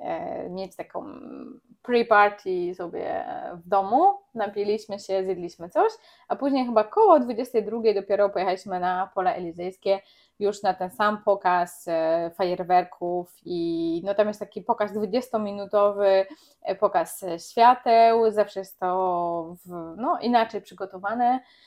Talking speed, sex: 115 wpm, female